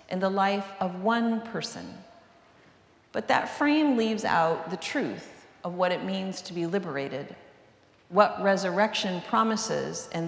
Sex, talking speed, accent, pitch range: female, 140 wpm, American, 170-220 Hz